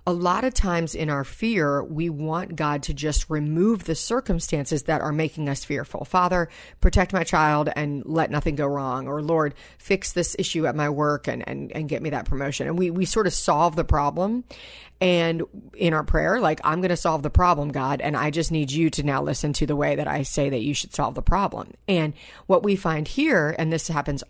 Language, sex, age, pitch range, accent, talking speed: English, female, 40-59, 150-175 Hz, American, 225 wpm